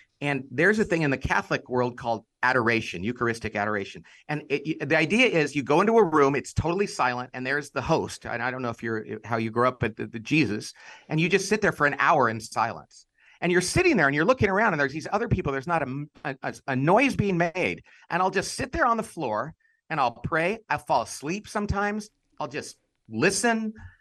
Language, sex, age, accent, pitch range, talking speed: English, male, 40-59, American, 115-165 Hz, 230 wpm